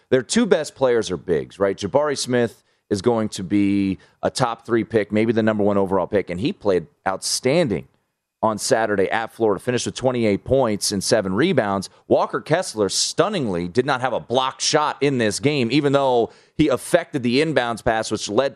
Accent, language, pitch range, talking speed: American, English, 100-135 Hz, 190 wpm